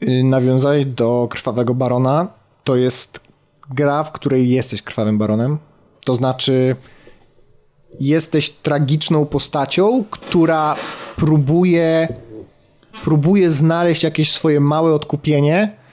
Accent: native